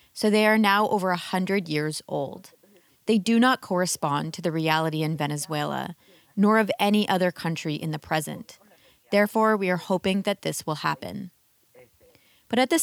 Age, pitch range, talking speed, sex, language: 30-49, 165-215 Hz, 175 wpm, female, English